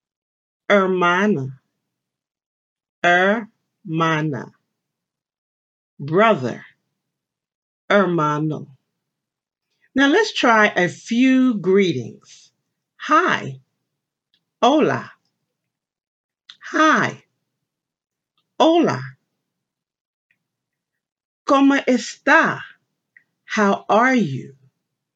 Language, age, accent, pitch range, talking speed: English, 50-69, American, 150-215 Hz, 45 wpm